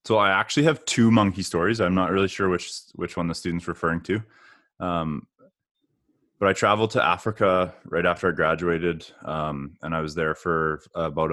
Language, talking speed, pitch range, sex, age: English, 185 wpm, 80-95 Hz, male, 20-39